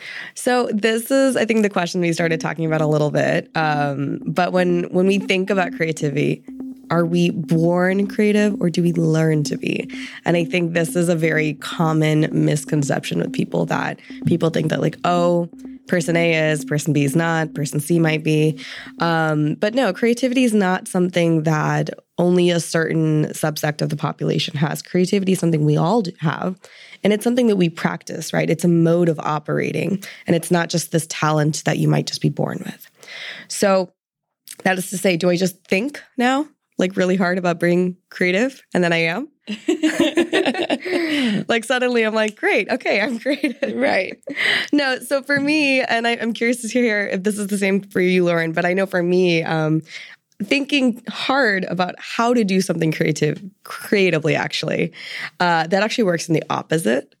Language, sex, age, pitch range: English, female, 20-39, 160-225 Hz